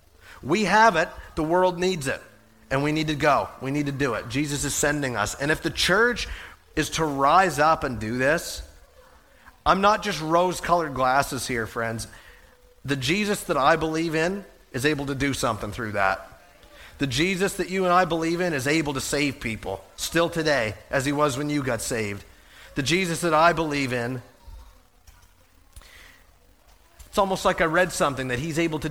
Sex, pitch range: male, 110-185 Hz